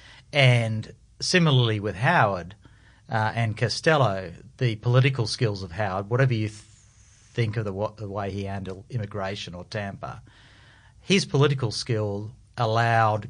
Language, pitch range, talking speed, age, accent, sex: English, 105-130 Hz, 135 wpm, 40-59, Australian, male